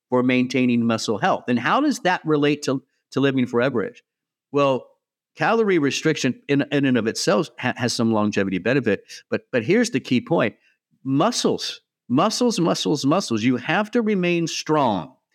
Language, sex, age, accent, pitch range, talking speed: English, male, 50-69, American, 115-160 Hz, 160 wpm